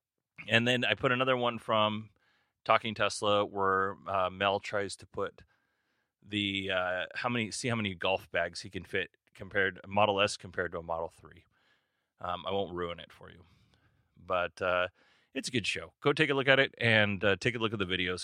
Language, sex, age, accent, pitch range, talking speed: English, male, 30-49, American, 95-115 Hz, 205 wpm